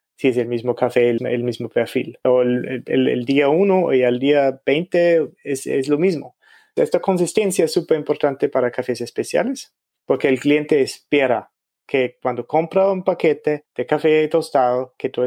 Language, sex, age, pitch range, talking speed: Spanish, male, 30-49, 125-160 Hz, 175 wpm